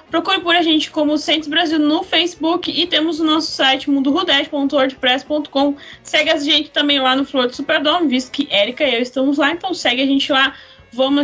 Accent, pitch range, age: Brazilian, 265-340 Hz, 10-29